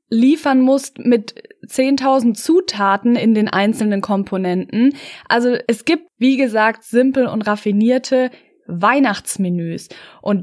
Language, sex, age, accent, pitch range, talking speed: German, female, 20-39, German, 215-260 Hz, 110 wpm